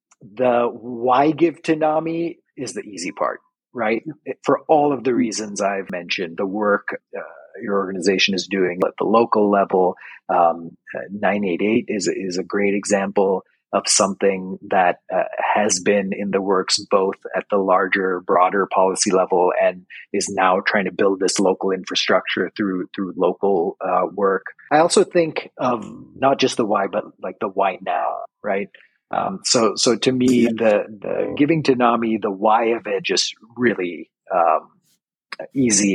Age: 30-49